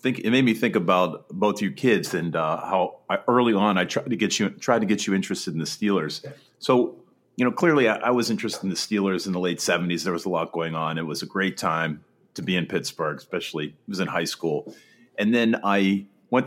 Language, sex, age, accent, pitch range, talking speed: English, male, 40-59, American, 90-110 Hz, 250 wpm